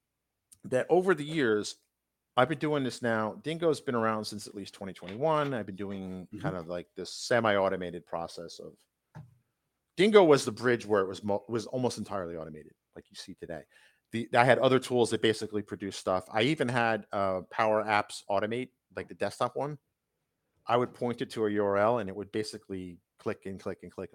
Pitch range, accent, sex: 95-130 Hz, American, male